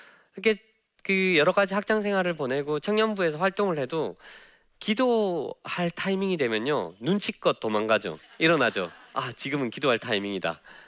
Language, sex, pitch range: Korean, male, 160-225 Hz